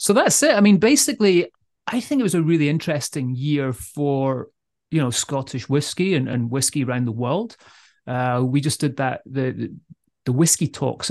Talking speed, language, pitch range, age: 185 wpm, English, 130-165 Hz, 30-49